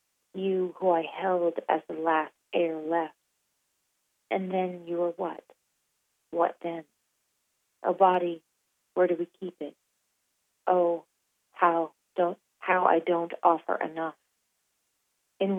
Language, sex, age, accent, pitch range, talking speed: English, female, 40-59, American, 165-185 Hz, 120 wpm